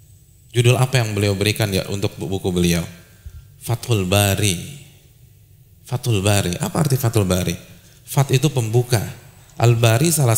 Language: Indonesian